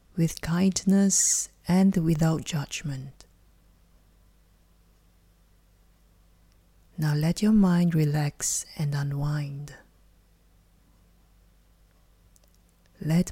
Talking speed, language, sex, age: 60 wpm, English, female, 30-49